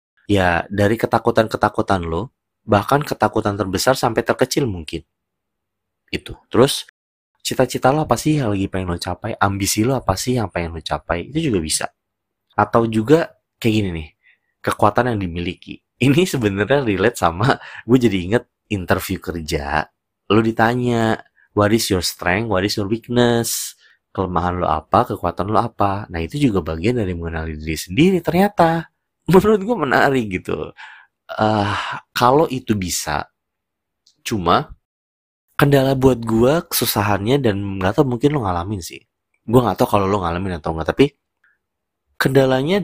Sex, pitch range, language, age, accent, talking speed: male, 95-130 Hz, Indonesian, 30-49, native, 145 wpm